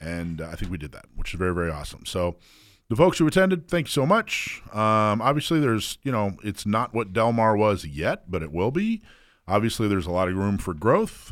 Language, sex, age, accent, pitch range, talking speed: English, male, 40-59, American, 85-115 Hz, 230 wpm